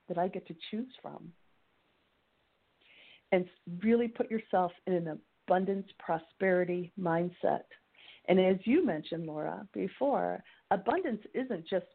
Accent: American